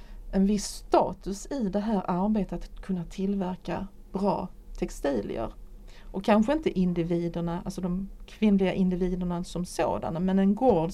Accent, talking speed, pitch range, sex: Swedish, 135 wpm, 180-210 Hz, female